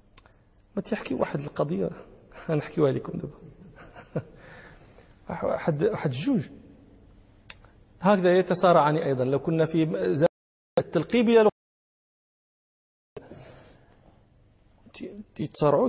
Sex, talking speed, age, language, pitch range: male, 70 wpm, 40-59, Arabic, 145-190 Hz